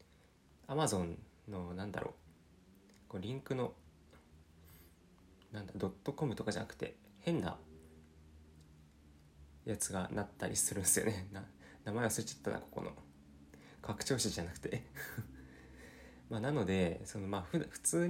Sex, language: male, Japanese